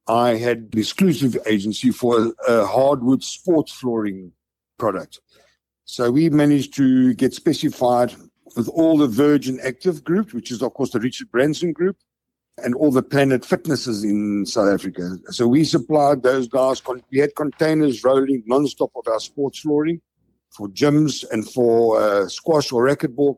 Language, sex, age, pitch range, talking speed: English, male, 60-79, 115-150 Hz, 160 wpm